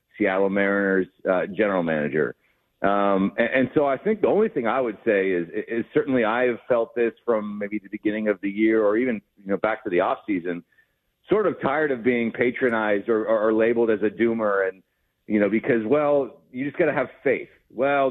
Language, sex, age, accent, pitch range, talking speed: English, male, 40-59, American, 110-155 Hz, 215 wpm